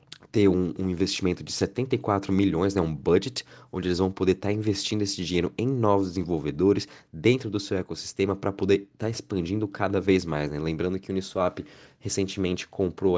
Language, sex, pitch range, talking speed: Portuguese, male, 85-100 Hz, 185 wpm